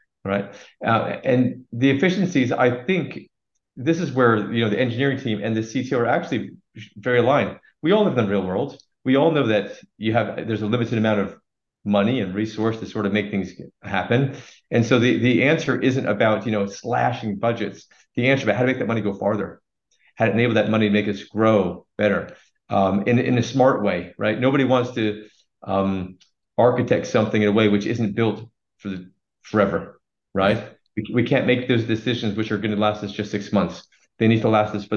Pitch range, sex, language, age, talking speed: 105-125 Hz, male, English, 40-59, 210 wpm